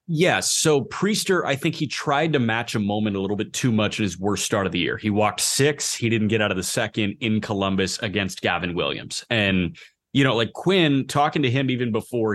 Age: 30-49